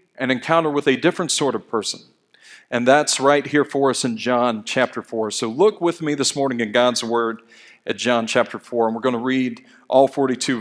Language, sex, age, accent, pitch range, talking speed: English, male, 40-59, American, 125-170 Hz, 215 wpm